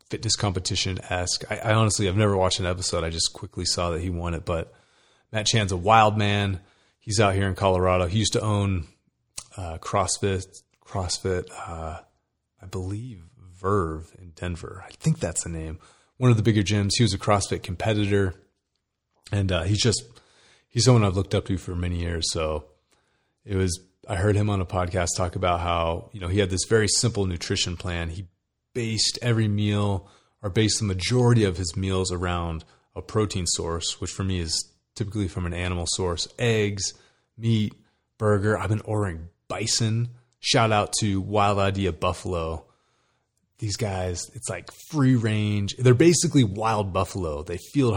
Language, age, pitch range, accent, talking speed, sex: English, 30-49, 90-110 Hz, American, 175 wpm, male